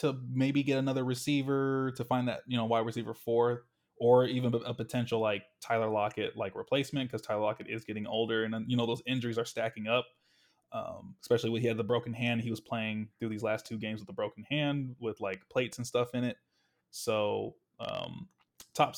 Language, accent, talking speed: English, American, 210 wpm